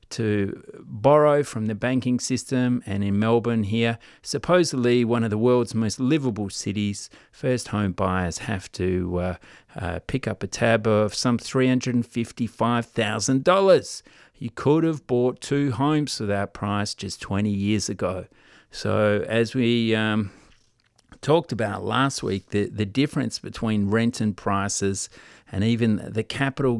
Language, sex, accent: English, male, Australian